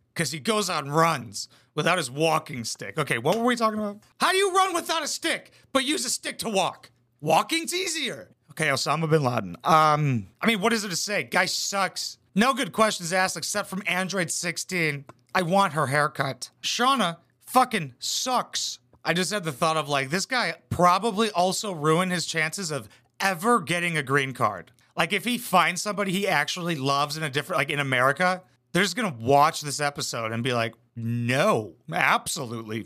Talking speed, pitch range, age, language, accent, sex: 190 wpm, 130-205 Hz, 30-49, English, American, male